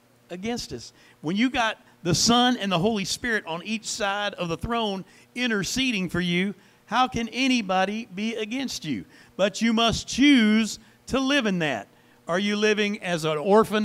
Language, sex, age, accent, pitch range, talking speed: English, male, 50-69, American, 125-200 Hz, 175 wpm